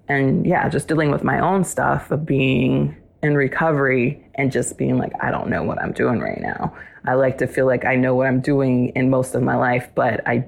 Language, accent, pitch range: English, American, 135-155 Hz